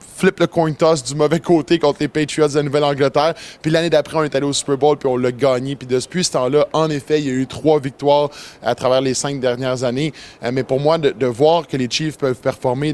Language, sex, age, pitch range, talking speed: French, male, 20-39, 130-150 Hz, 250 wpm